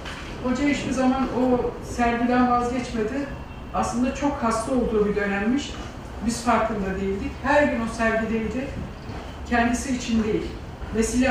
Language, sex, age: Turkish, female, 60-79